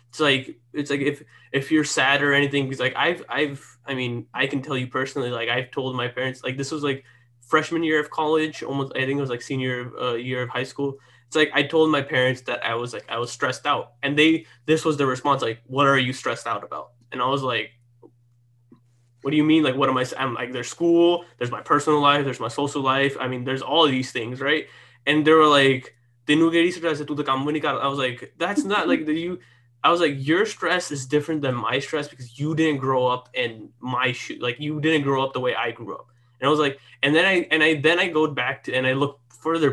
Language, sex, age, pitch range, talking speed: English, male, 20-39, 125-150 Hz, 250 wpm